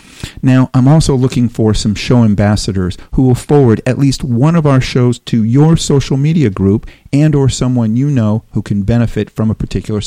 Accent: American